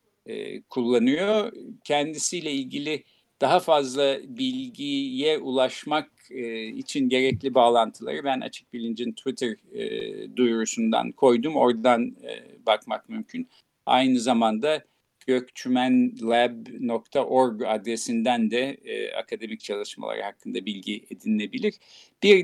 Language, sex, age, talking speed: Turkish, male, 50-69, 80 wpm